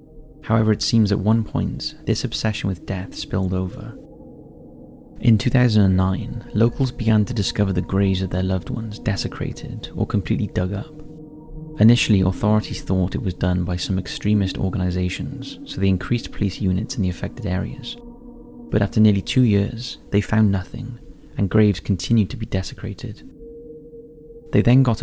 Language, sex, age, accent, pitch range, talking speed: English, male, 30-49, British, 95-120 Hz, 155 wpm